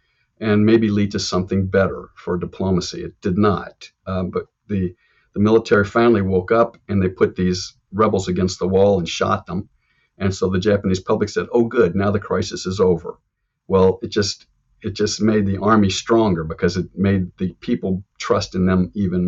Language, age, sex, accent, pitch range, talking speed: English, 50-69, male, American, 95-105 Hz, 190 wpm